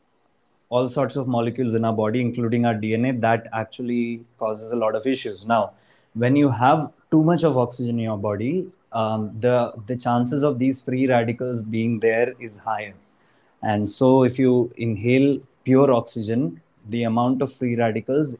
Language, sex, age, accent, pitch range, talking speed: English, male, 20-39, Indian, 110-130 Hz, 170 wpm